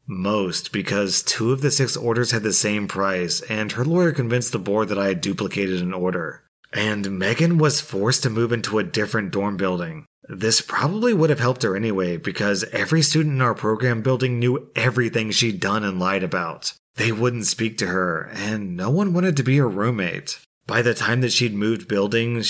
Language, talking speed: English, 200 wpm